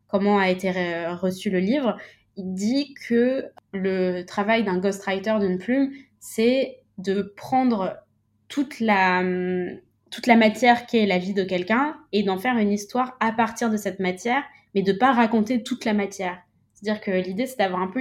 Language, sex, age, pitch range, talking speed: French, female, 20-39, 185-230 Hz, 175 wpm